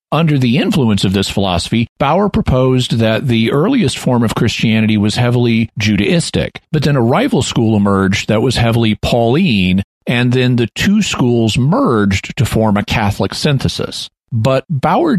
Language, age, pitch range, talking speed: English, 40-59, 100-120 Hz, 160 wpm